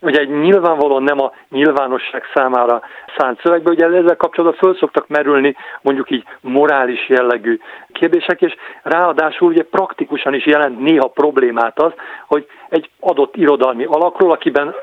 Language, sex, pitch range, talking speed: Hungarian, male, 135-175 Hz, 140 wpm